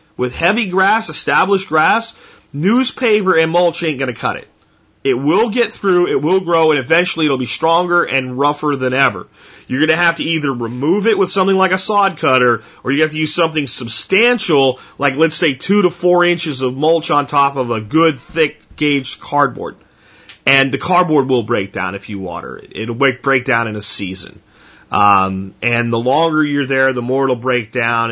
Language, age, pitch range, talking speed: English, 30-49, 125-165 Hz, 205 wpm